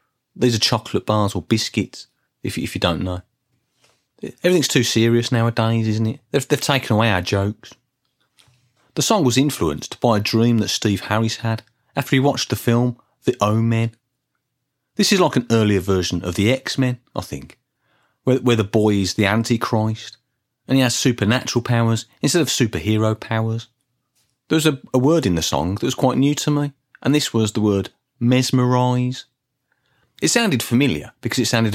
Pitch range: 105-130 Hz